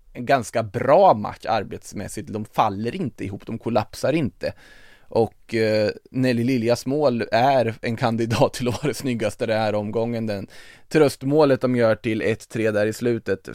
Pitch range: 110-135 Hz